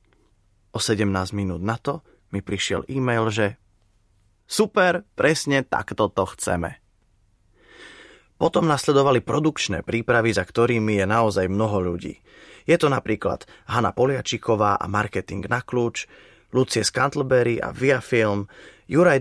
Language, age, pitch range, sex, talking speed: Slovak, 20-39, 100-125 Hz, male, 115 wpm